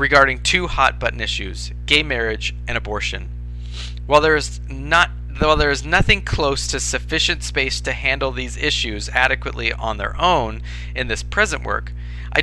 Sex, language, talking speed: male, English, 160 wpm